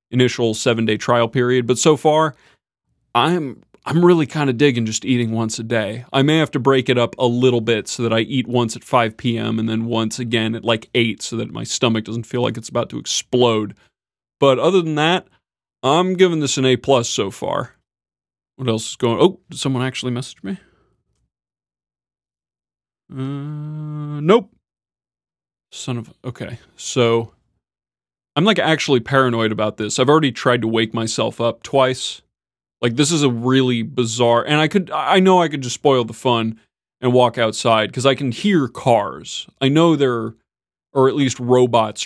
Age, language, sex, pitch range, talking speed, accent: 30-49, English, male, 115-135 Hz, 185 wpm, American